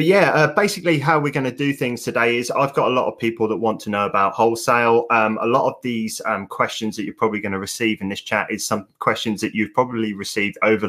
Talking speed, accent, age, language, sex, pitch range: 265 wpm, British, 20-39, English, male, 105-125 Hz